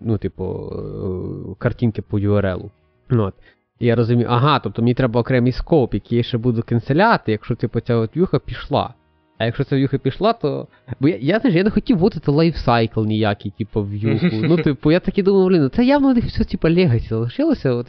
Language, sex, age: Ukrainian, male, 20-39